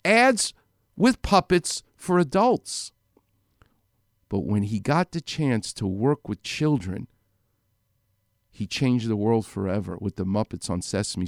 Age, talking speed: 50-69, 135 wpm